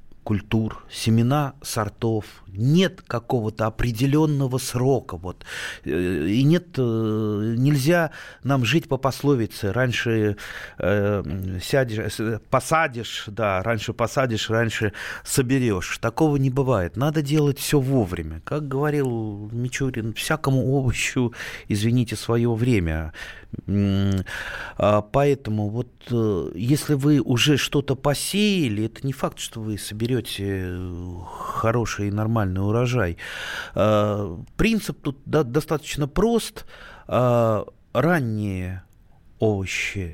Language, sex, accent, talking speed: Russian, male, native, 90 wpm